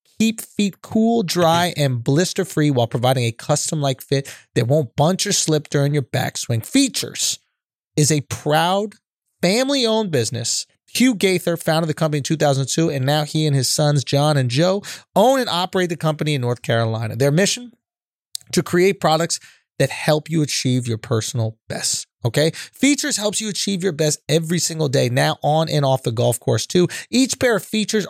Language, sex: English, male